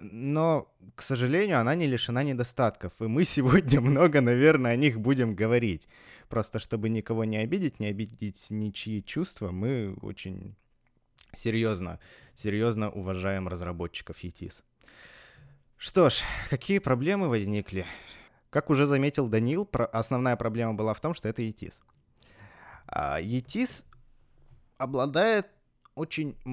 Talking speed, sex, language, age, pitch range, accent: 120 wpm, male, Russian, 20-39, 110-135 Hz, native